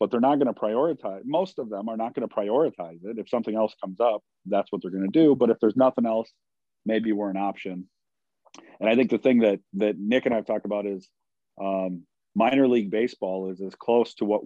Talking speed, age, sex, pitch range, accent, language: 225 wpm, 40-59, male, 95-115 Hz, American, English